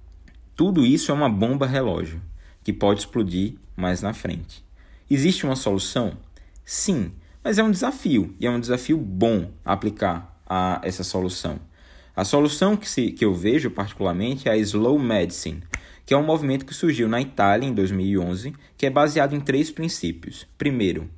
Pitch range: 90-140 Hz